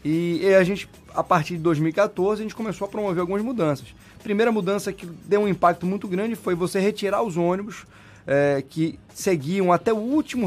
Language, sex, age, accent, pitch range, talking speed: Portuguese, male, 20-39, Brazilian, 145-195 Hz, 195 wpm